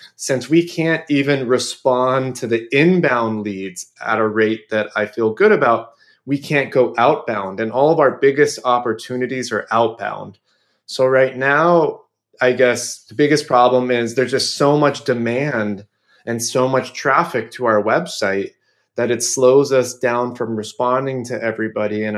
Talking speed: 160 wpm